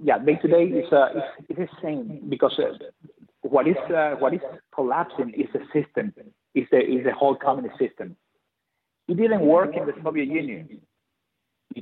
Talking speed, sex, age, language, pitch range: 150 wpm, male, 50-69, English, 140-175 Hz